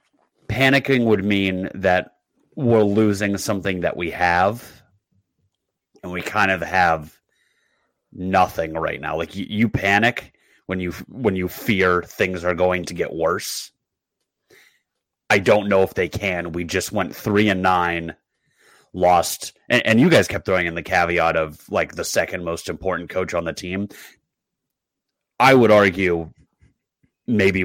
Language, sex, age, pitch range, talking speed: English, male, 30-49, 90-115 Hz, 150 wpm